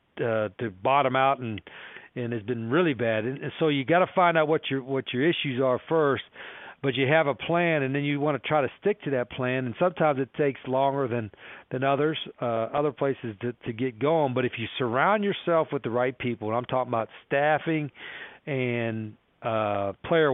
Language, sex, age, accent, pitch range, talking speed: English, male, 40-59, American, 120-155 Hz, 205 wpm